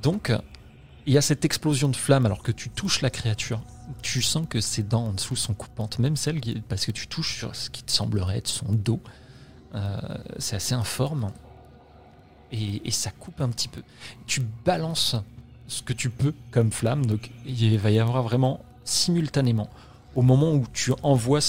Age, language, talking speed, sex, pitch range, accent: 30-49, French, 190 wpm, male, 110-130 Hz, French